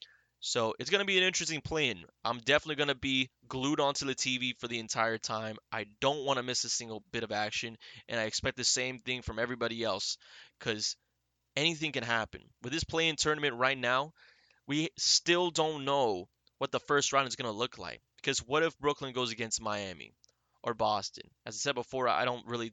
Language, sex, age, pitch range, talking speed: English, male, 20-39, 110-130 Hz, 210 wpm